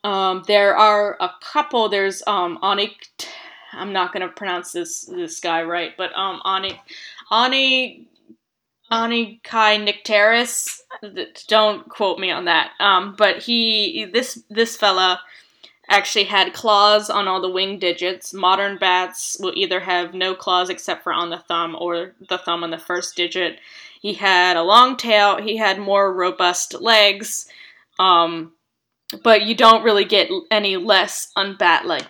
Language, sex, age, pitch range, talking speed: English, female, 10-29, 180-215 Hz, 150 wpm